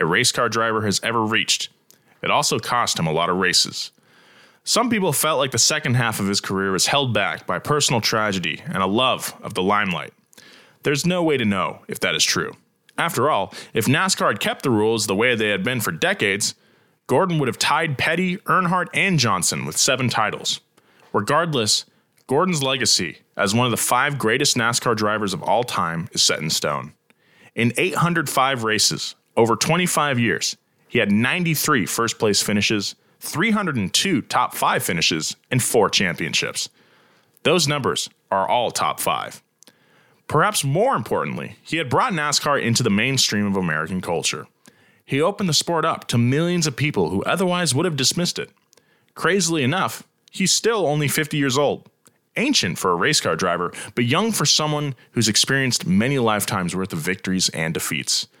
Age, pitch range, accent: 20-39, 110-160 Hz, American